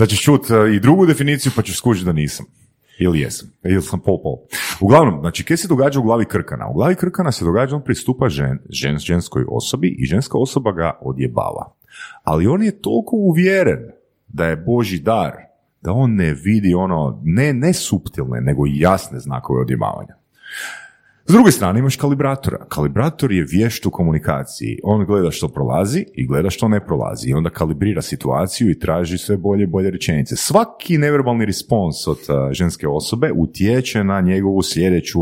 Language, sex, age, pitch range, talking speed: Croatian, male, 40-59, 80-130 Hz, 175 wpm